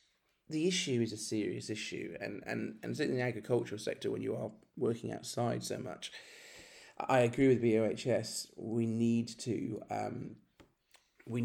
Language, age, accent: English, 40-59, British